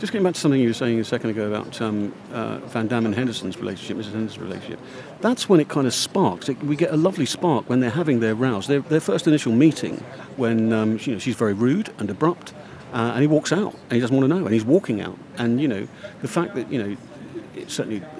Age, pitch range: 50-69, 115-180 Hz